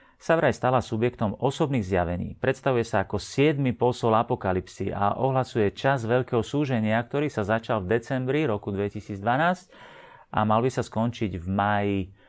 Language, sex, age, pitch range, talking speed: Slovak, male, 40-59, 100-125 Hz, 145 wpm